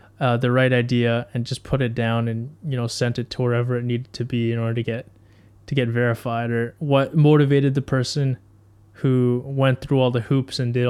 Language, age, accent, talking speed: English, 20-39, American, 220 wpm